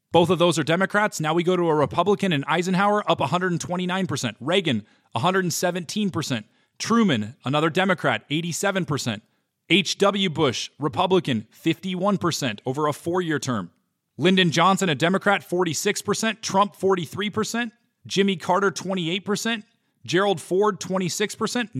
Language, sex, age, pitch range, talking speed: English, male, 30-49, 145-195 Hz, 120 wpm